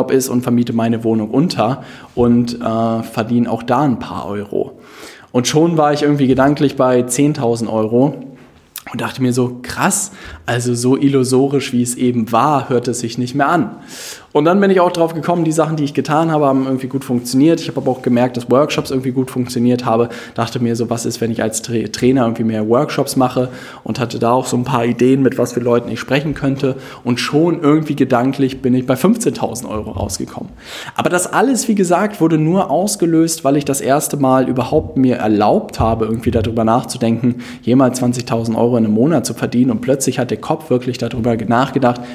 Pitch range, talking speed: 120-145 Hz, 205 wpm